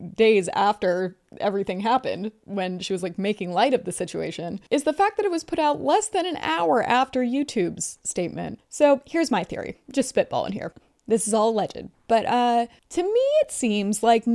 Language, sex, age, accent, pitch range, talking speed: English, female, 20-39, American, 200-275 Hz, 190 wpm